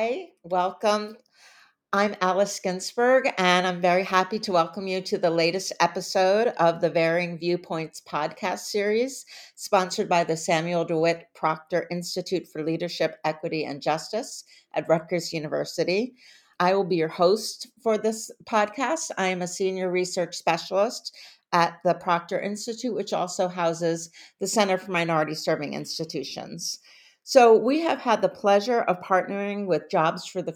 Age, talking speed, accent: 50-69, 150 wpm, American